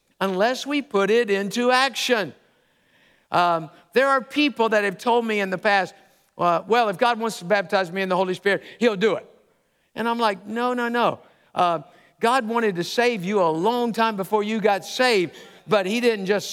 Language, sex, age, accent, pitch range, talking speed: English, male, 50-69, American, 190-245 Hz, 200 wpm